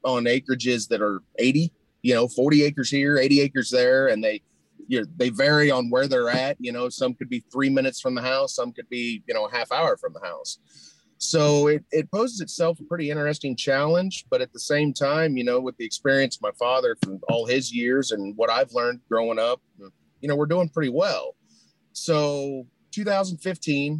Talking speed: 210 wpm